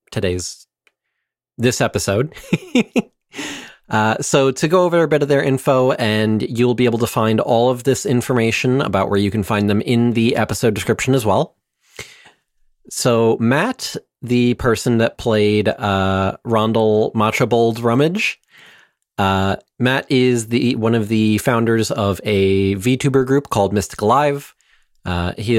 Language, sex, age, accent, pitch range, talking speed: English, male, 30-49, American, 100-125 Hz, 145 wpm